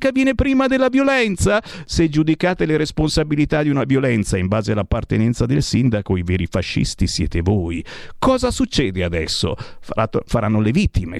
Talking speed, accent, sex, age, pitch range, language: 145 wpm, native, male, 50-69, 105-155 Hz, Italian